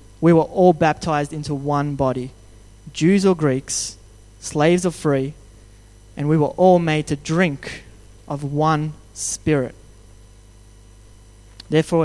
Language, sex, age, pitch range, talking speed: English, male, 20-39, 105-155 Hz, 120 wpm